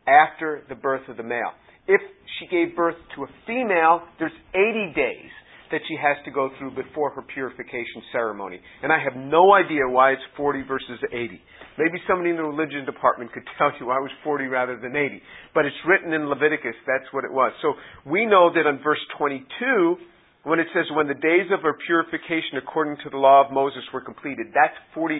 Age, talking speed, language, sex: 50-69, 205 wpm, English, male